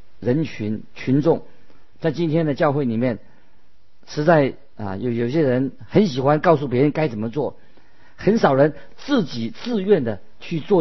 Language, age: Chinese, 50-69